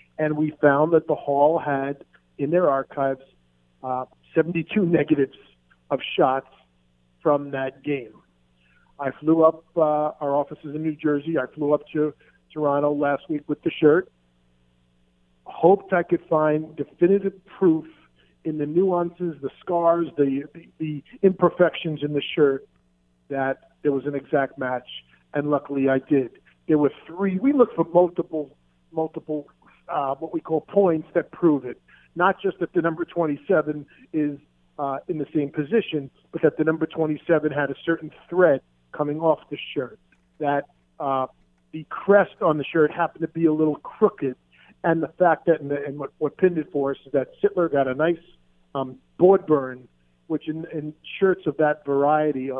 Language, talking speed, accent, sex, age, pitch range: English, 170 wpm, American, male, 50-69, 135-165 Hz